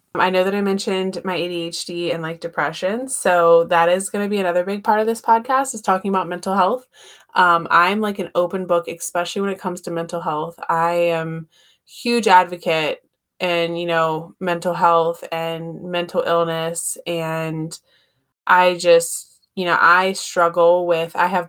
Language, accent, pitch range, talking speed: English, American, 170-205 Hz, 175 wpm